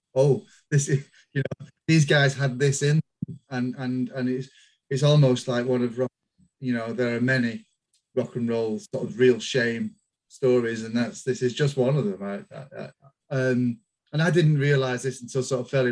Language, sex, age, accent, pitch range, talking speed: English, male, 30-49, British, 120-140 Hz, 205 wpm